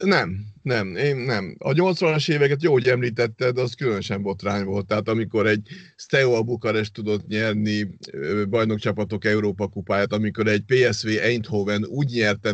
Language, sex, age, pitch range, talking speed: Hungarian, male, 50-69, 100-115 Hz, 145 wpm